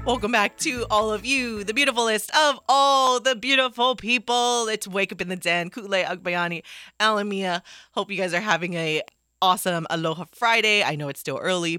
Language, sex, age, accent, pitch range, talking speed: English, female, 30-49, American, 140-200 Hz, 185 wpm